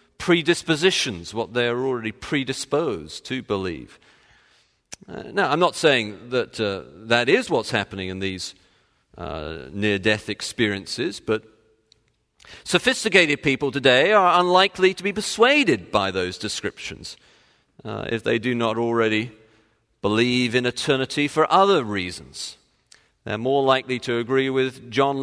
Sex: male